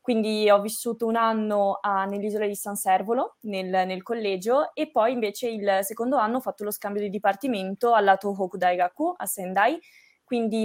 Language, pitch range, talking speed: Italian, 190-220 Hz, 175 wpm